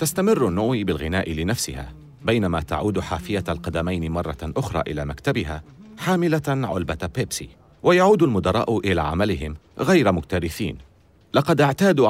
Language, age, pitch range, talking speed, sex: Arabic, 40-59, 85-130 Hz, 115 wpm, male